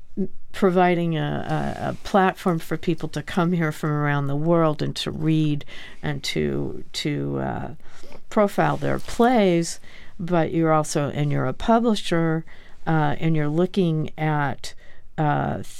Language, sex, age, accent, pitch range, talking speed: English, female, 60-79, American, 145-175 Hz, 135 wpm